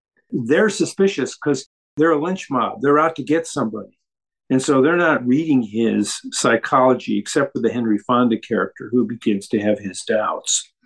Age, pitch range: 50-69, 120-165 Hz